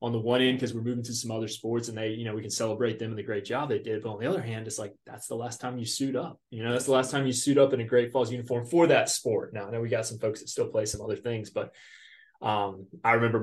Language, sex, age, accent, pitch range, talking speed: English, male, 20-39, American, 110-130 Hz, 325 wpm